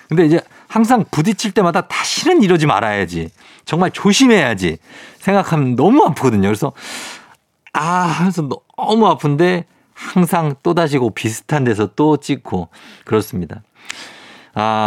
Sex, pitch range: male, 100-170 Hz